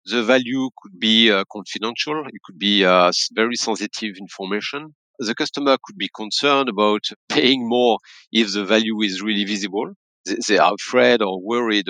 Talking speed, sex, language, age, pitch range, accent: 165 wpm, male, English, 40-59, 100-130 Hz, French